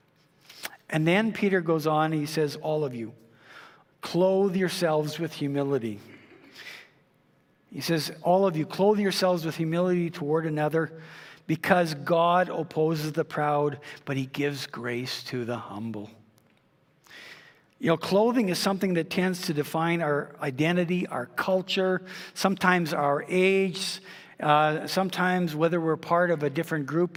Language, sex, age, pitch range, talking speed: English, male, 50-69, 150-180 Hz, 135 wpm